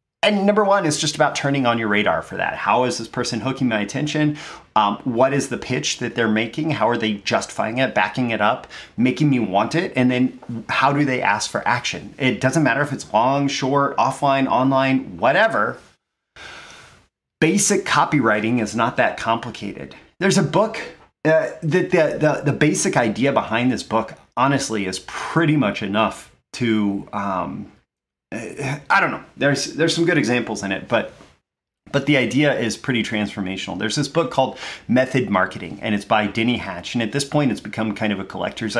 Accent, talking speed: American, 185 wpm